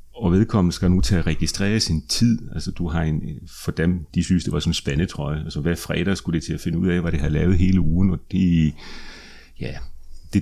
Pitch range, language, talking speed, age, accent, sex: 80-95 Hz, Danish, 235 wpm, 40-59, native, male